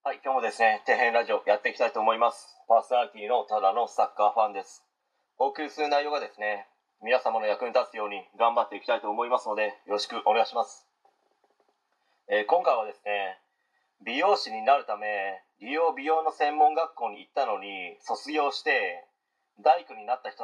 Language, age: Japanese, 30-49